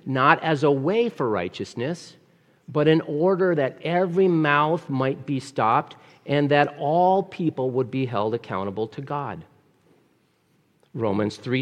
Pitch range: 125-165 Hz